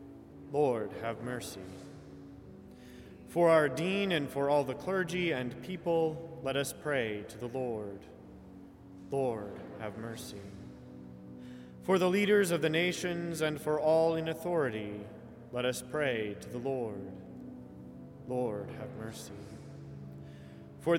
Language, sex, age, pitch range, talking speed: English, male, 30-49, 100-165 Hz, 125 wpm